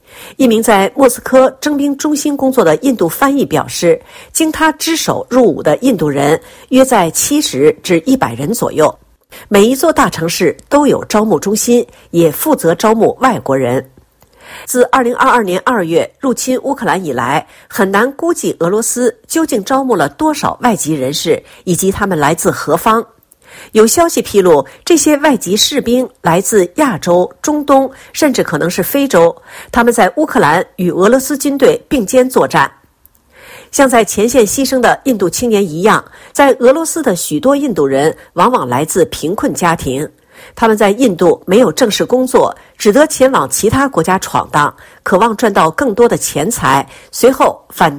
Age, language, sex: 50-69, Chinese, female